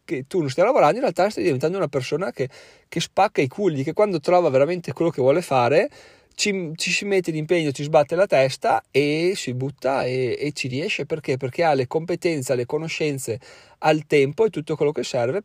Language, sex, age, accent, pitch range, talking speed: Italian, male, 30-49, native, 130-160 Hz, 210 wpm